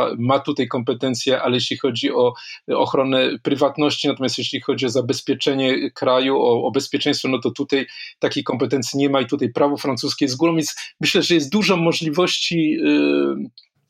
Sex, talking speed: male, 165 wpm